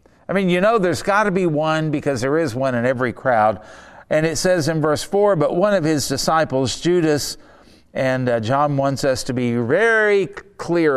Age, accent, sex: 50-69, American, male